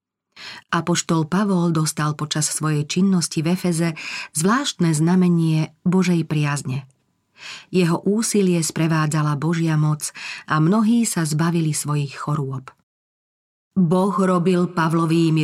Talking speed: 100 wpm